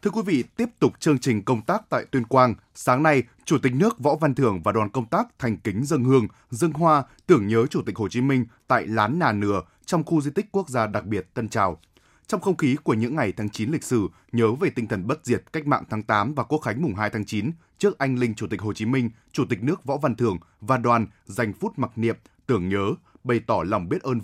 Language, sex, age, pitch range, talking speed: Vietnamese, male, 20-39, 105-135 Hz, 260 wpm